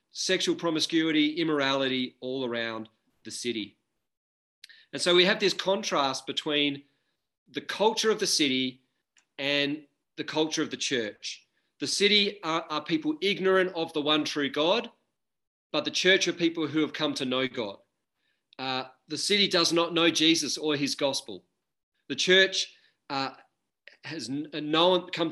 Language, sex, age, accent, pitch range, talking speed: English, male, 40-59, Australian, 145-185 Hz, 145 wpm